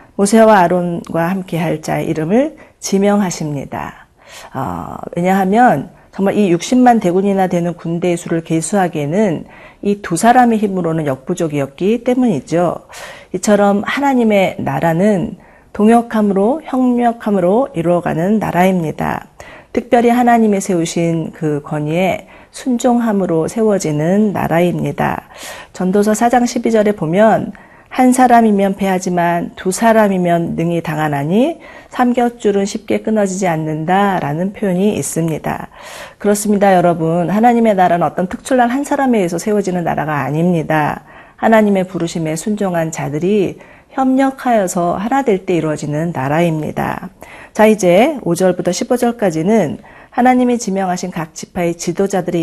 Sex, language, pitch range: female, Korean, 170-225 Hz